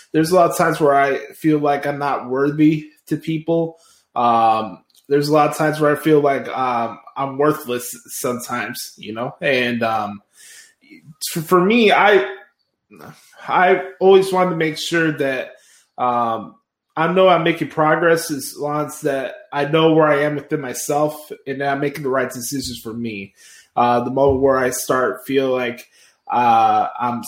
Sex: male